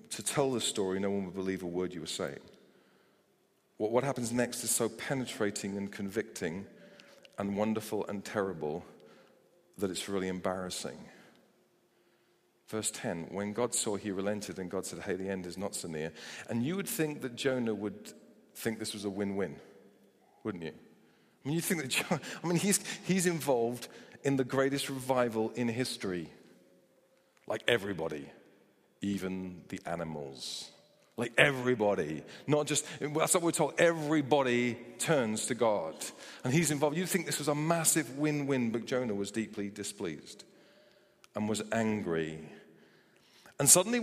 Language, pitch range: English, 100-150 Hz